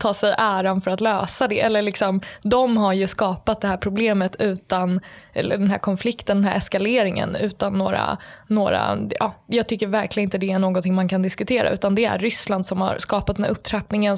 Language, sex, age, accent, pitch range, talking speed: Swedish, female, 20-39, native, 195-220 Hz, 205 wpm